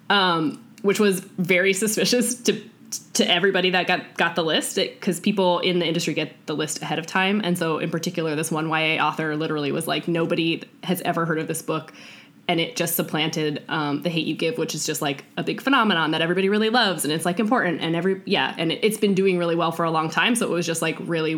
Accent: American